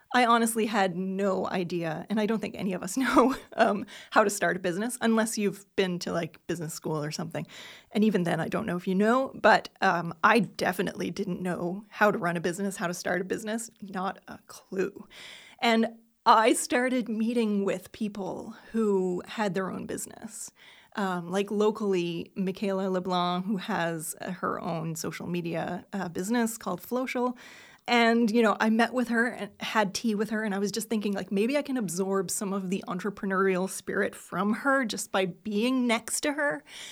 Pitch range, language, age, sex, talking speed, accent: 190-240 Hz, English, 30-49, female, 190 wpm, American